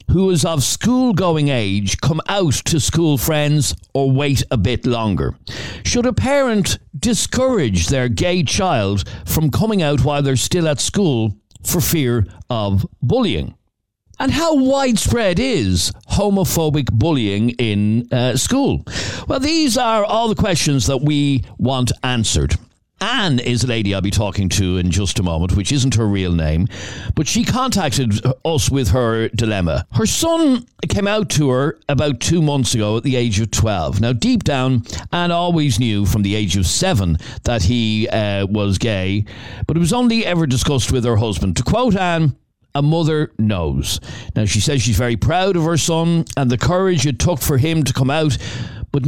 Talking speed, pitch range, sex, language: 175 wpm, 105-165 Hz, male, English